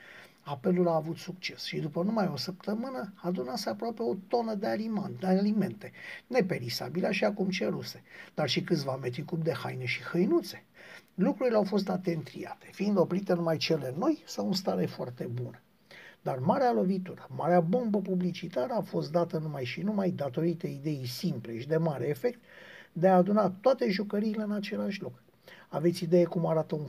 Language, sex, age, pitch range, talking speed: Romanian, male, 50-69, 160-200 Hz, 170 wpm